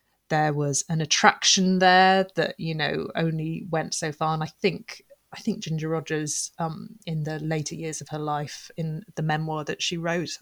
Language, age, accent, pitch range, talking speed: English, 30-49, British, 145-180 Hz, 190 wpm